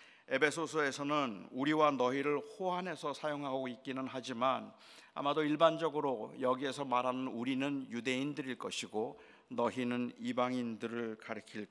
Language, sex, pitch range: Korean, male, 130-155 Hz